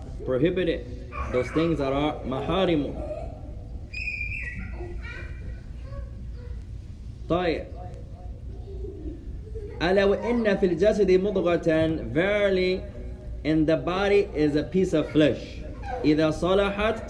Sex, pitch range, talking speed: male, 140-185 Hz, 65 wpm